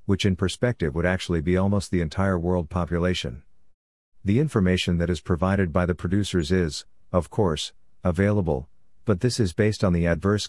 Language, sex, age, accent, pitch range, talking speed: English, male, 50-69, American, 85-100 Hz, 170 wpm